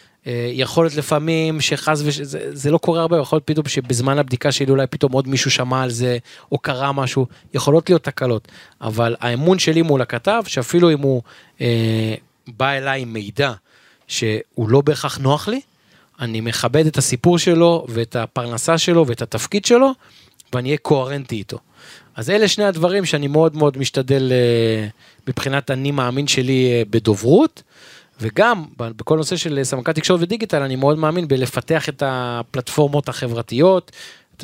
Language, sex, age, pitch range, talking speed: Hebrew, male, 20-39, 125-150 Hz, 160 wpm